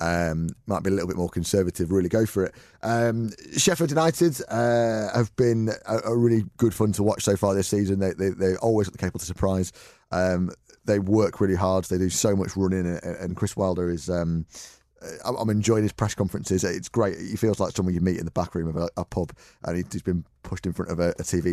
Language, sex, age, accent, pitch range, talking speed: English, male, 30-49, British, 90-110 Hz, 235 wpm